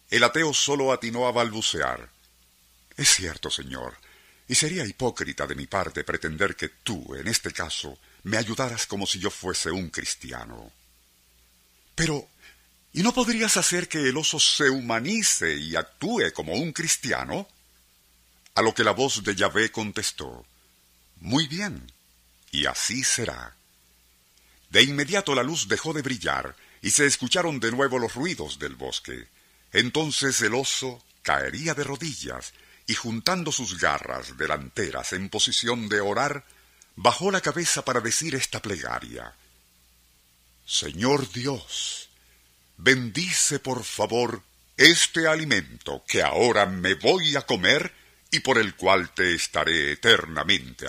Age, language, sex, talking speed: 50-69, Spanish, male, 135 wpm